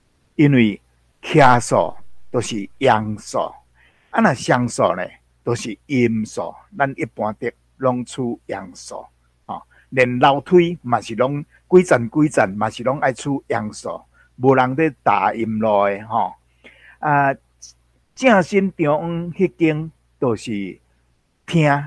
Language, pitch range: Chinese, 105-155 Hz